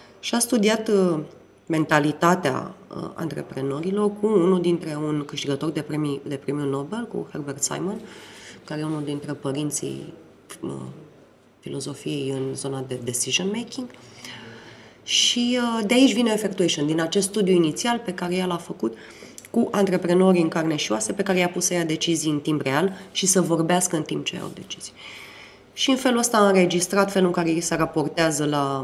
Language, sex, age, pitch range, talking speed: Romanian, female, 20-39, 145-205 Hz, 160 wpm